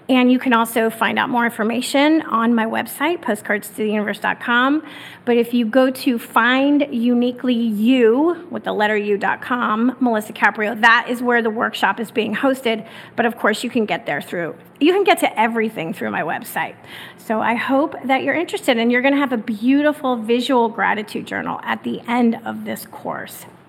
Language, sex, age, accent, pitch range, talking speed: English, female, 30-49, American, 230-280 Hz, 185 wpm